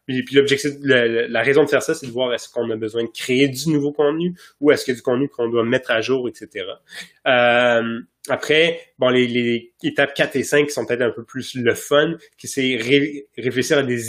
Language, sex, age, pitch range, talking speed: French, male, 20-39, 115-140 Hz, 240 wpm